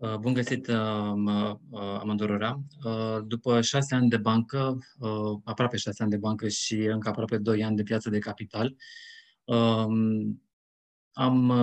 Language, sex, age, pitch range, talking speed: Romanian, male, 20-39, 105-125 Hz, 125 wpm